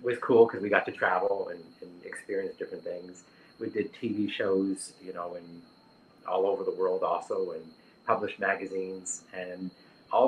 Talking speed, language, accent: 170 wpm, English, American